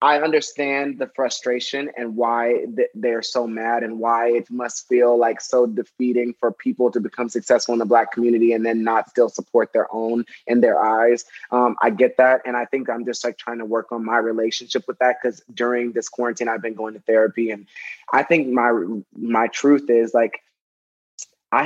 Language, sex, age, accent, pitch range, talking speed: English, male, 20-39, American, 115-125 Hz, 200 wpm